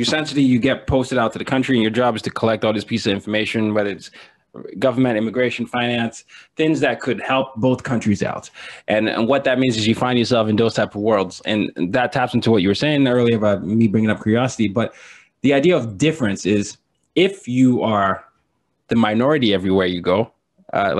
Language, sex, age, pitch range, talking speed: English, male, 20-39, 110-140 Hz, 210 wpm